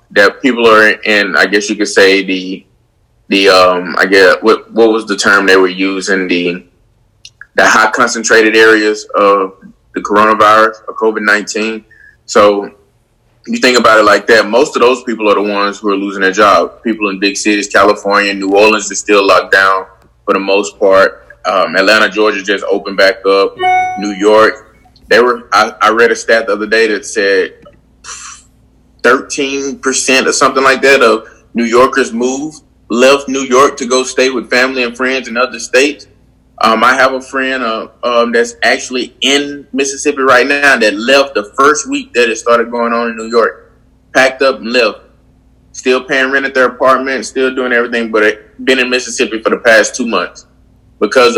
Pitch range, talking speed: 105-130 Hz, 185 wpm